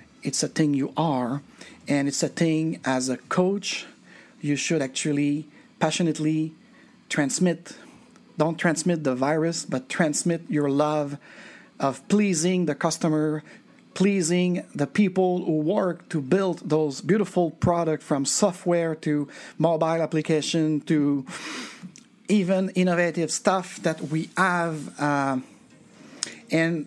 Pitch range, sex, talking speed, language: 155-195 Hz, male, 115 wpm, English